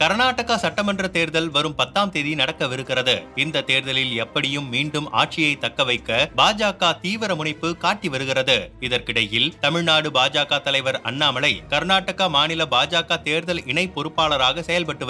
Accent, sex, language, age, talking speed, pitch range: native, male, Tamil, 30-49, 120 wpm, 140-175 Hz